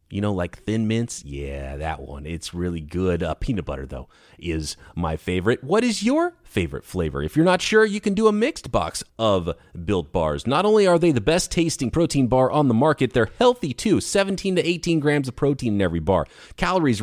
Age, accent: 30-49, American